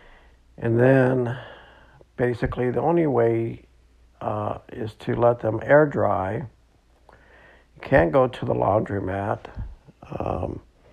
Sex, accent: male, American